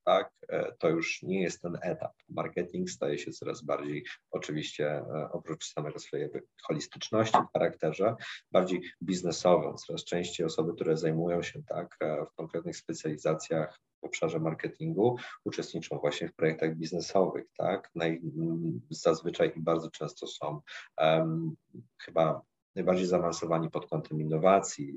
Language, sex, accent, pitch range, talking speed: Polish, male, native, 80-100 Hz, 125 wpm